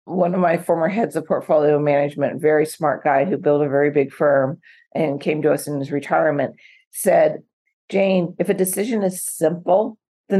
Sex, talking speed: female, 185 wpm